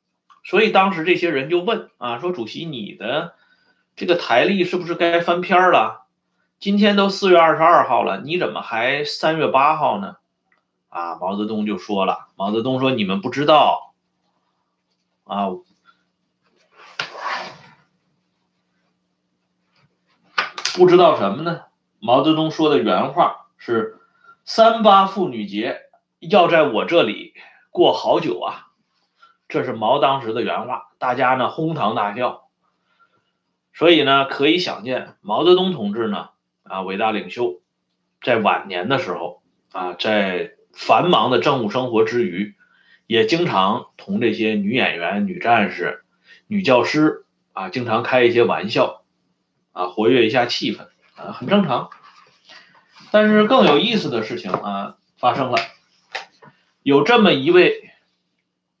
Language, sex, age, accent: Swedish, male, 30-49, Chinese